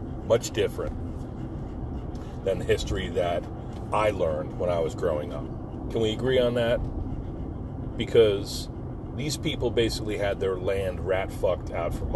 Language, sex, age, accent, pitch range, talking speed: English, male, 40-59, American, 90-120 Hz, 140 wpm